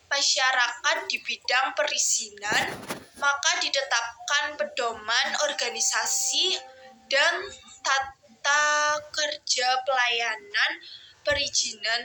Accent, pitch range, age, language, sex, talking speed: native, 245-315 Hz, 20-39, Indonesian, female, 65 wpm